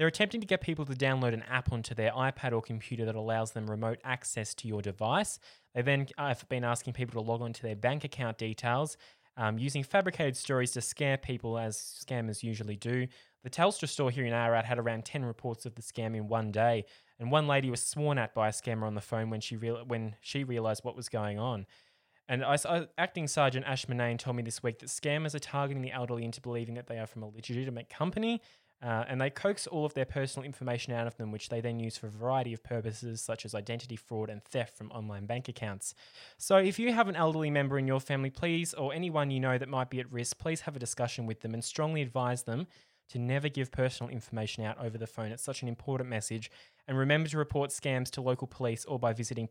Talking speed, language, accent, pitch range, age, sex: 230 wpm, English, Australian, 115-140 Hz, 10-29, male